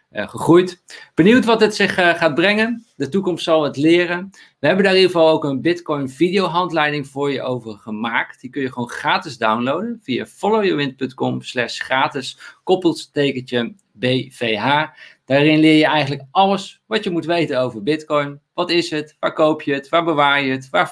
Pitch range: 130-175 Hz